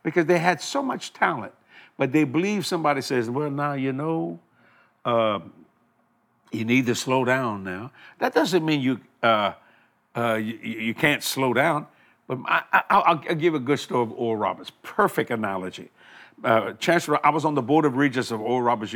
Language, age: English, 60-79